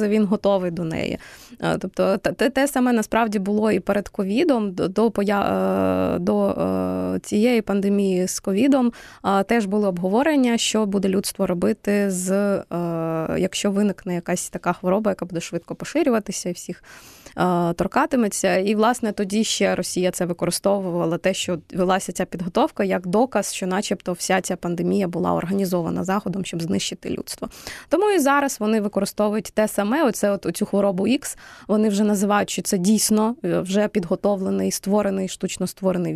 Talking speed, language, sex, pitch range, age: 145 wpm, Ukrainian, female, 180-225 Hz, 20-39